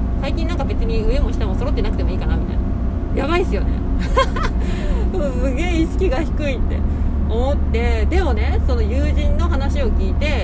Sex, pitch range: female, 65-80 Hz